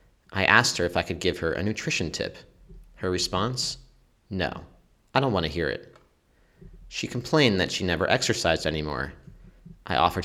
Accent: American